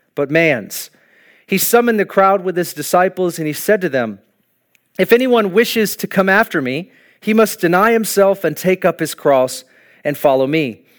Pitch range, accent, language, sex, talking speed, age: 145-195 Hz, American, English, male, 180 wpm, 40-59